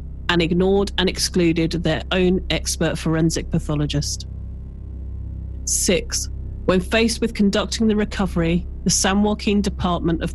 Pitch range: 150-195 Hz